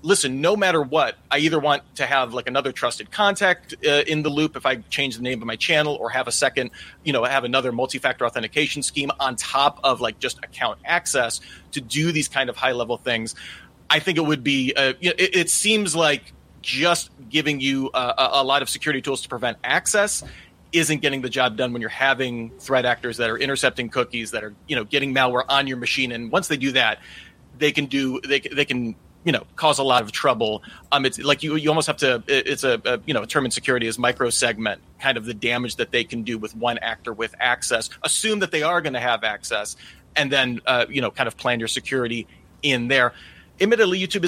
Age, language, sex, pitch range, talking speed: 30-49, English, male, 120-150 Hz, 230 wpm